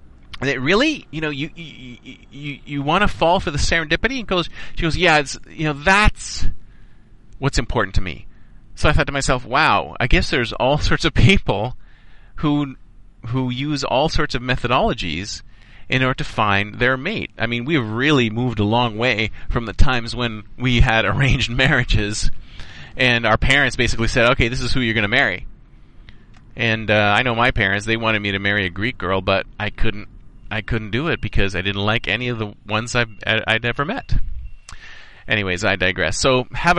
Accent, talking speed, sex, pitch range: American, 195 wpm, male, 105-135 Hz